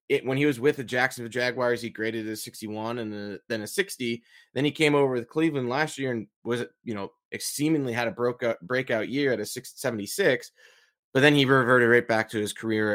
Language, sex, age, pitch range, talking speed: English, male, 20-39, 105-120 Hz, 220 wpm